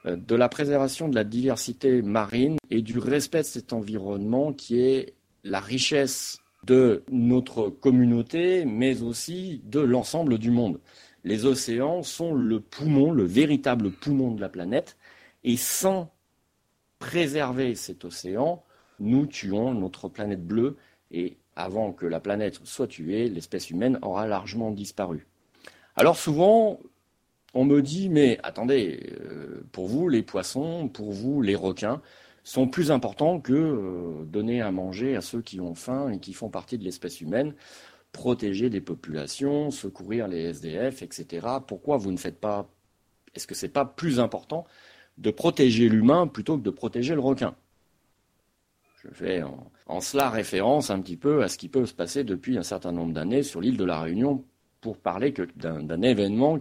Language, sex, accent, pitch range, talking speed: French, male, French, 100-140 Hz, 160 wpm